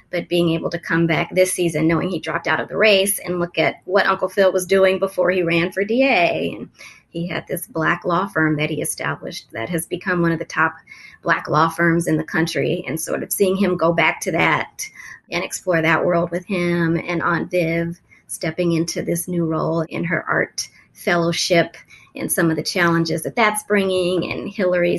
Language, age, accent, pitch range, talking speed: English, 30-49, American, 165-190 Hz, 210 wpm